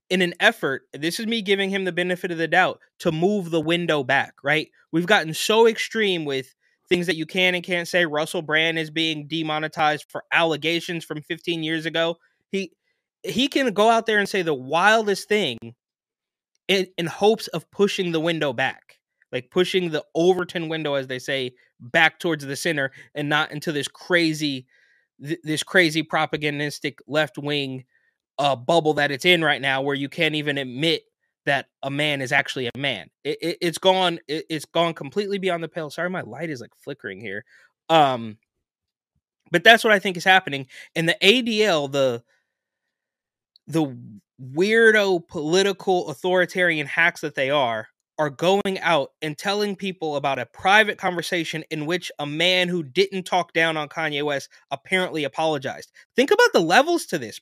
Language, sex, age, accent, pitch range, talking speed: English, male, 20-39, American, 150-185 Hz, 175 wpm